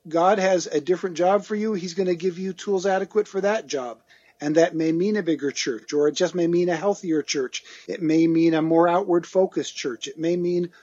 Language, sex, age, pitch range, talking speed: English, male, 50-69, 155-185 Hz, 235 wpm